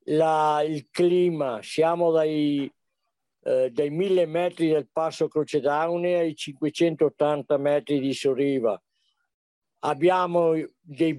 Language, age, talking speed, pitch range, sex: Italian, 60-79, 100 wpm, 150-185 Hz, male